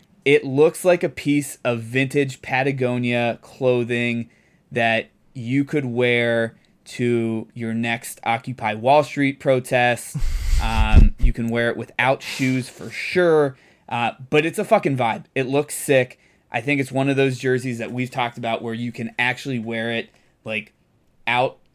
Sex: male